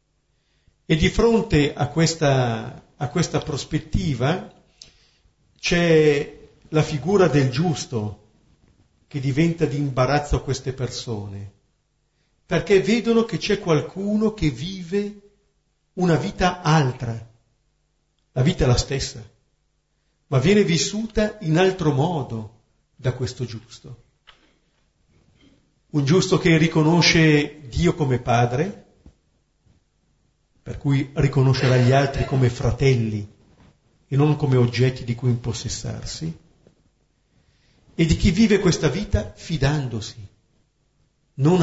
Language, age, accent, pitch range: Italian, 50-69, native, 115-160 Hz